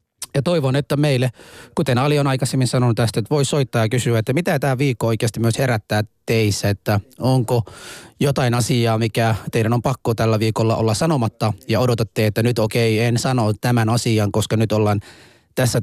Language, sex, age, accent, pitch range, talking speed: Finnish, male, 30-49, native, 110-135 Hz, 185 wpm